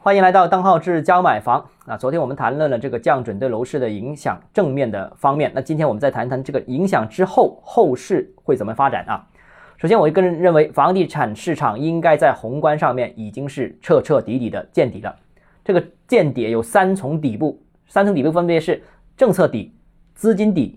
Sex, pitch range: male, 135-185 Hz